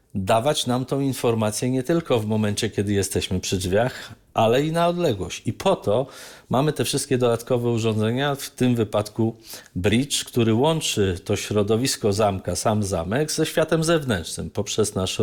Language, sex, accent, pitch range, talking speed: Polish, male, native, 100-130 Hz, 160 wpm